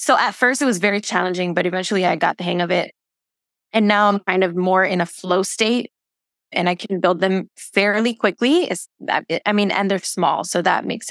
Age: 20-39